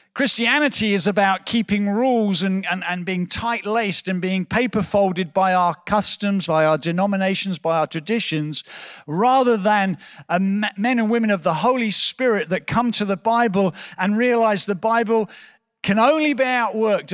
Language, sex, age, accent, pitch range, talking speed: English, male, 40-59, British, 165-210 Hz, 165 wpm